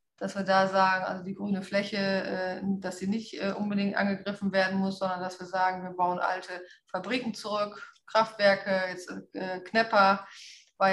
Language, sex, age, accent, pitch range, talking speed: German, female, 30-49, German, 190-205 Hz, 155 wpm